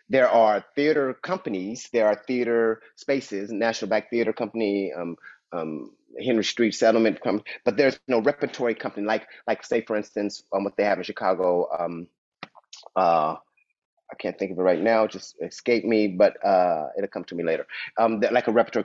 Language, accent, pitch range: English, American, 90-115 Hz